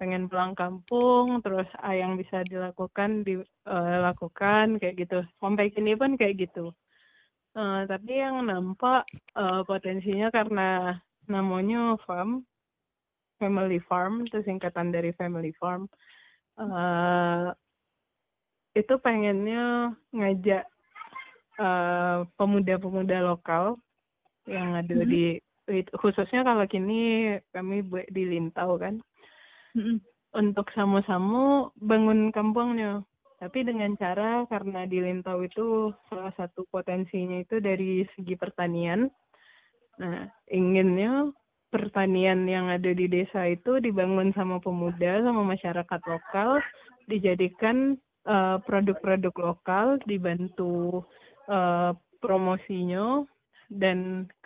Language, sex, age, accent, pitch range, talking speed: Indonesian, female, 20-39, native, 180-220 Hz, 100 wpm